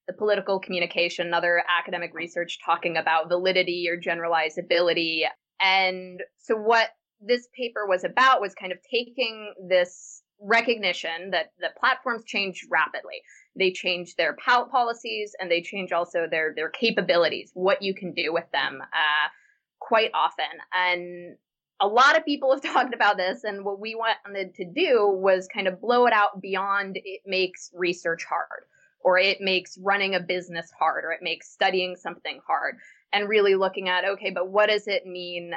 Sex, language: female, English